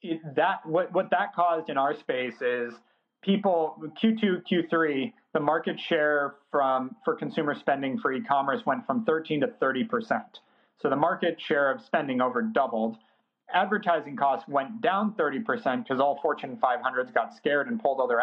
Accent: American